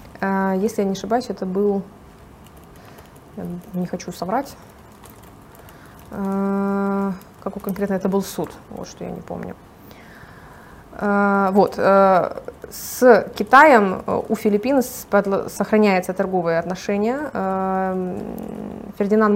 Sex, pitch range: female, 190-220 Hz